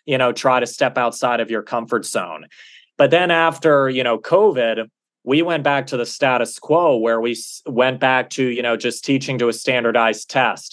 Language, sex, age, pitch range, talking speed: English, male, 20-39, 115-135 Hz, 200 wpm